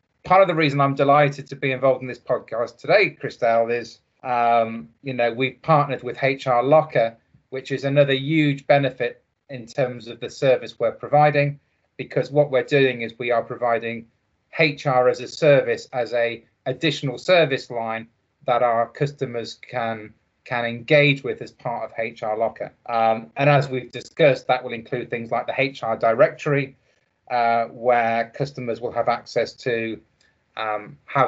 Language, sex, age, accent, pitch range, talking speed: English, male, 30-49, British, 115-140 Hz, 165 wpm